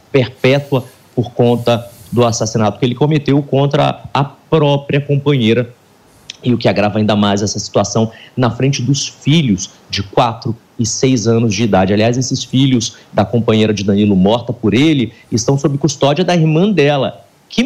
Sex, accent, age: male, Brazilian, 30-49